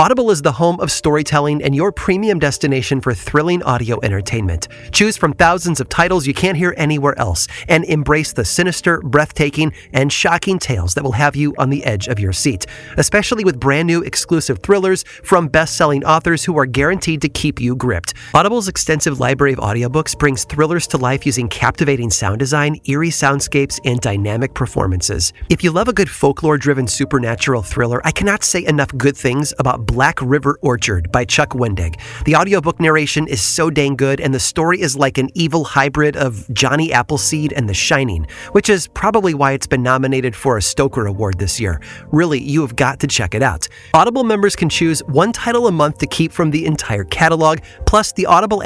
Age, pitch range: 30-49, 130-170 Hz